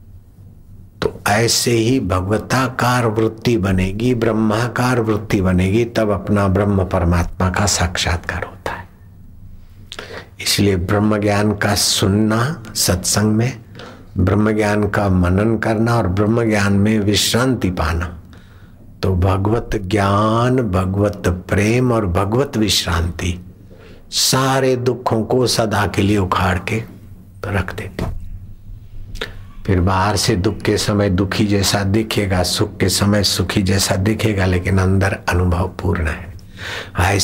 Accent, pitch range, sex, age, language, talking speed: native, 95-110 Hz, male, 60-79, Hindi, 120 wpm